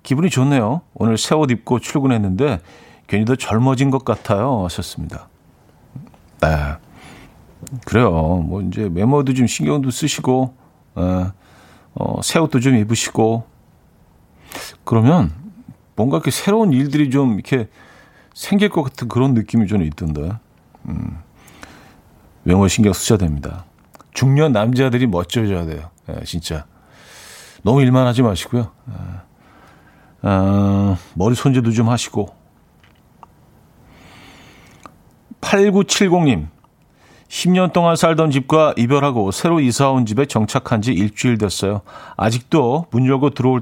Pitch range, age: 100-140 Hz, 50-69